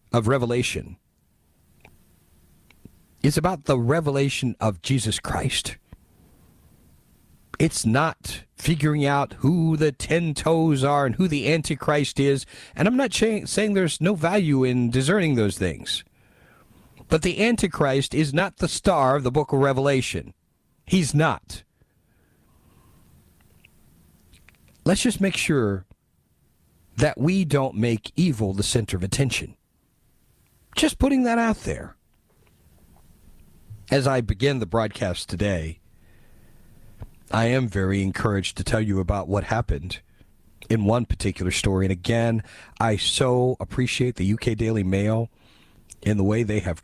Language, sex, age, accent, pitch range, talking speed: English, male, 50-69, American, 95-140 Hz, 130 wpm